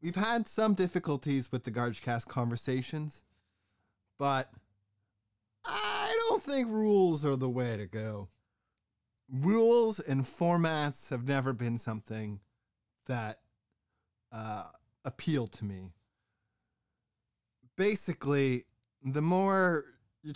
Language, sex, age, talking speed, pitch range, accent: English, male, 20-39, 105 wpm, 110-140 Hz, American